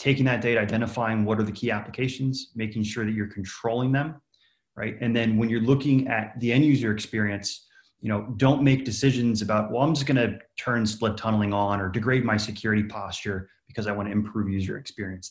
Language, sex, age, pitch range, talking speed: English, male, 30-49, 105-120 Hz, 200 wpm